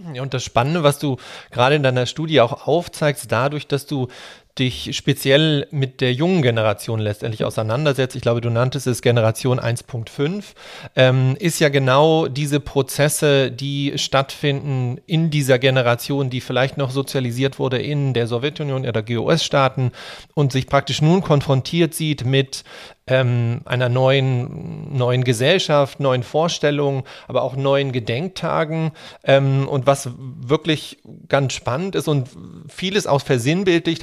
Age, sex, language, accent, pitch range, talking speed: 40-59, male, German, German, 130-150 Hz, 140 wpm